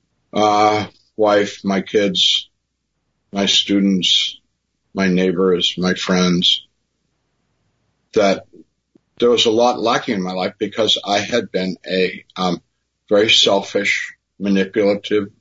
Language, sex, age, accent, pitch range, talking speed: English, male, 50-69, American, 95-110 Hz, 110 wpm